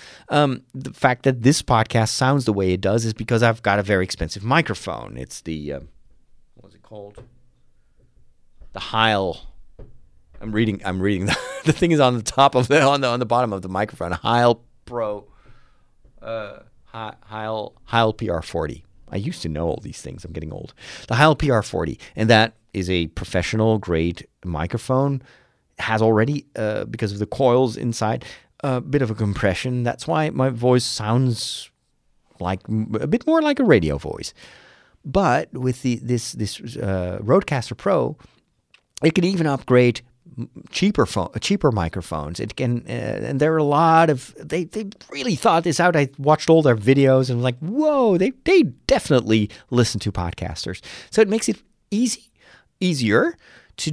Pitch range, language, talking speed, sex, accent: 105-145 Hz, English, 170 wpm, male, American